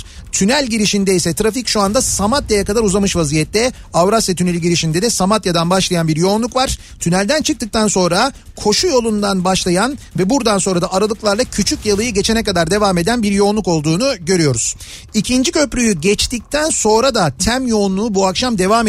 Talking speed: 160 wpm